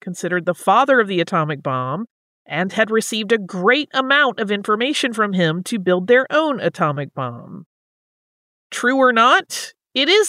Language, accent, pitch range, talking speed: English, American, 165-220 Hz, 165 wpm